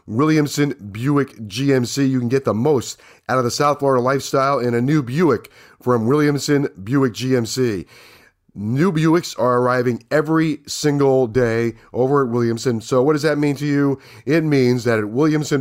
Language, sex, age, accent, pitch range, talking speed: English, male, 40-59, American, 125-150 Hz, 170 wpm